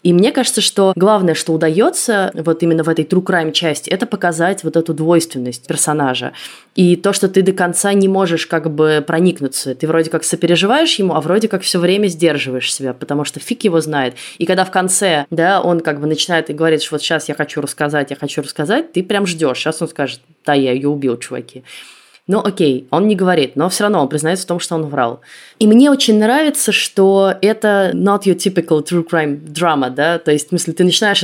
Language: Russian